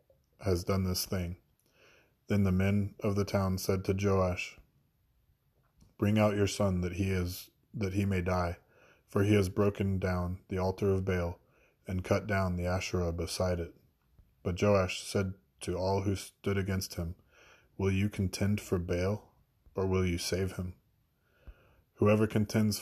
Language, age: English, 20-39